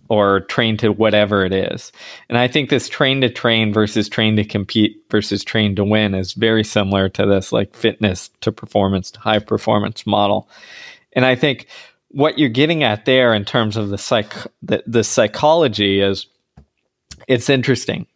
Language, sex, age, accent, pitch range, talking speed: English, male, 20-39, American, 105-145 Hz, 170 wpm